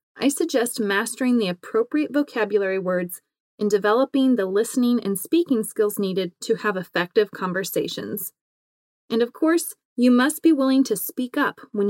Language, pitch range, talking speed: English, 195-270 Hz, 150 wpm